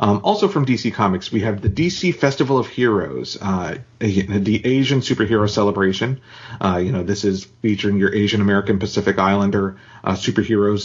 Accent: American